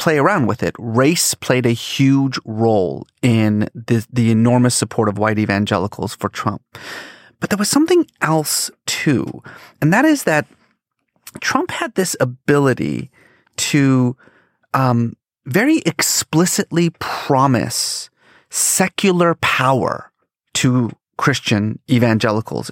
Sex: male